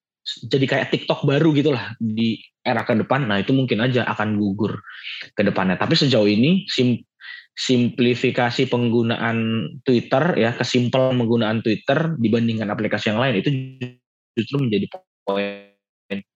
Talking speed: 130 wpm